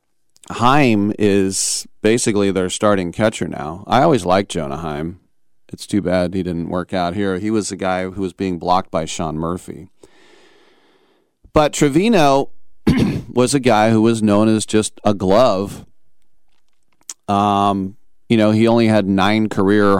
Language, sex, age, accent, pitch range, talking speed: English, male, 40-59, American, 95-120 Hz, 155 wpm